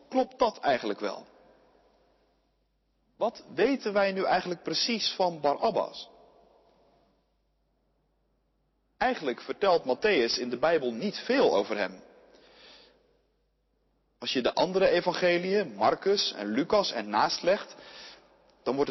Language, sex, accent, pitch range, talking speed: Dutch, male, Dutch, 165-270 Hz, 110 wpm